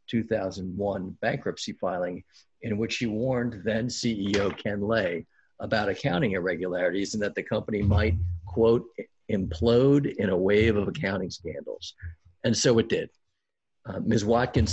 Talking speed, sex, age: 135 wpm, male, 50-69